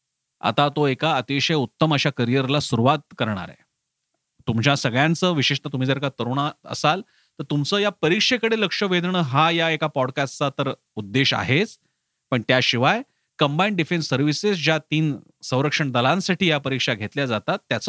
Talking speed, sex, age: 100 wpm, male, 40-59